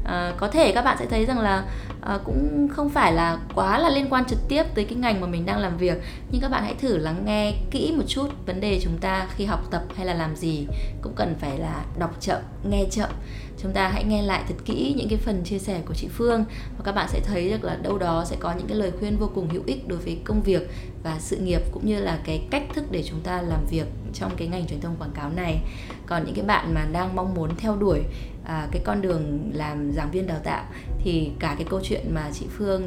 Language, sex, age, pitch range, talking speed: Vietnamese, female, 20-39, 155-210 Hz, 260 wpm